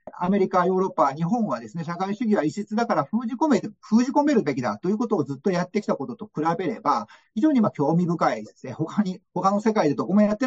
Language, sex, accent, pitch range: Japanese, male, native, 165-220 Hz